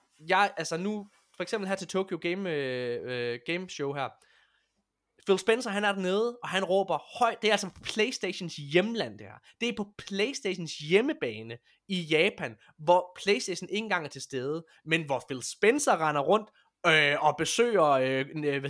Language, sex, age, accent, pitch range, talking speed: Danish, male, 20-39, native, 140-195 Hz, 165 wpm